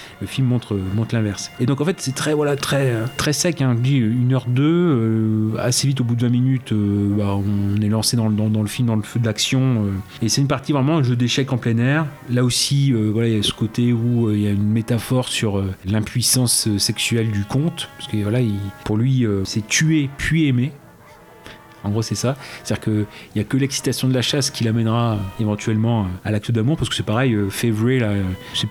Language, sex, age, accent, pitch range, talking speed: French, male, 30-49, French, 105-125 Hz, 250 wpm